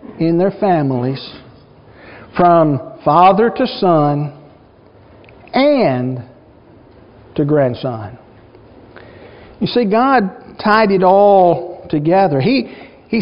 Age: 60-79